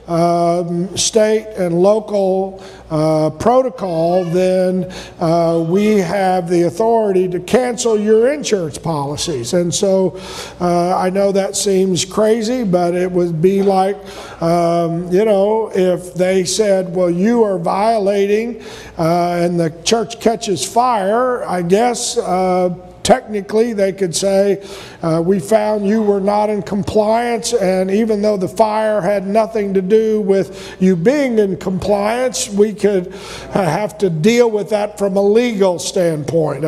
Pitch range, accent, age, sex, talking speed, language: 175-210 Hz, American, 50-69, male, 140 wpm, English